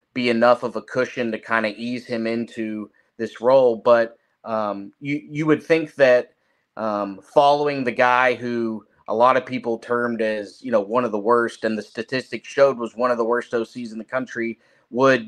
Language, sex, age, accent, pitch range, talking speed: English, male, 30-49, American, 105-125 Hz, 200 wpm